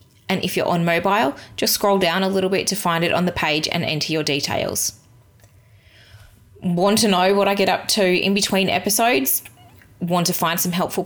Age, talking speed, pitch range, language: 20-39, 200 wpm, 155-185 Hz, English